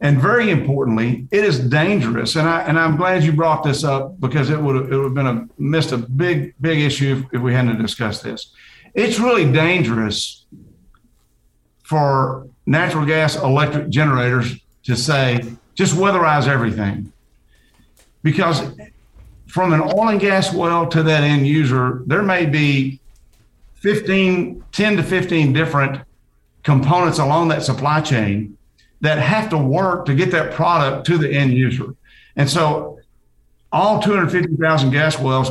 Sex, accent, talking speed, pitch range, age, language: male, American, 155 wpm, 130-165 Hz, 50-69, English